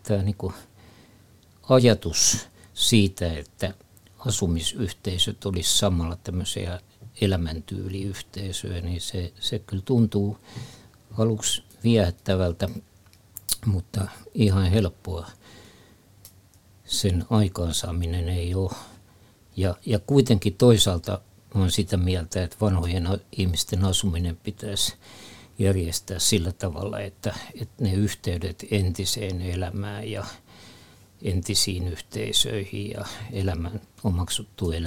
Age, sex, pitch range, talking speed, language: 60-79, male, 90-105 Hz, 85 wpm, Finnish